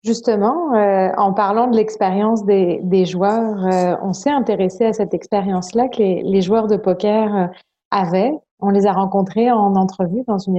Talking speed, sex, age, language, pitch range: 175 wpm, female, 30-49, French, 195-225 Hz